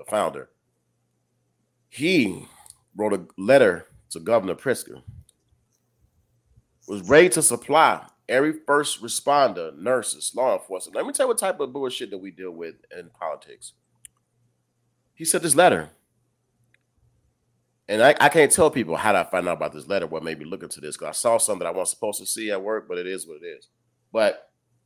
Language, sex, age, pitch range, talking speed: English, male, 30-49, 105-140 Hz, 180 wpm